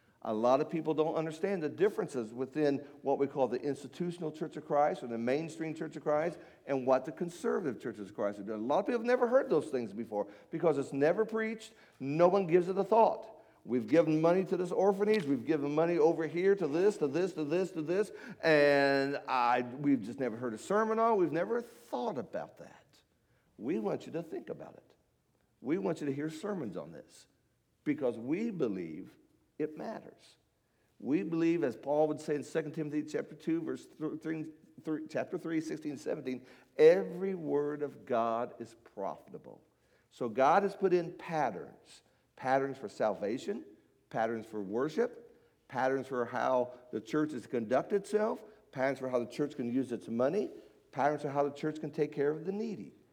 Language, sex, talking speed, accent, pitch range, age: English, male, 190 wpm, American, 135-190 Hz, 50-69